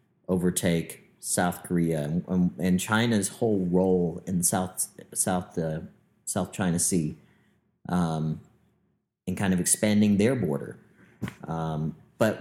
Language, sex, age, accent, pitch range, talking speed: English, male, 40-59, American, 90-110 Hz, 110 wpm